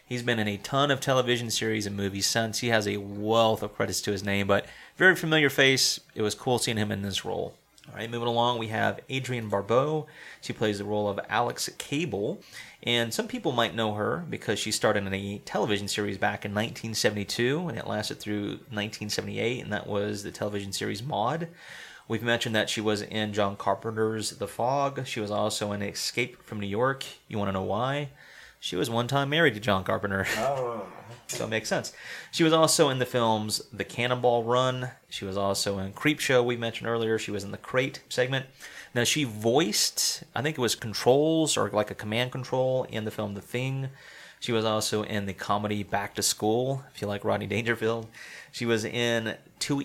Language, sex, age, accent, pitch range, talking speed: English, male, 30-49, American, 105-125 Hz, 205 wpm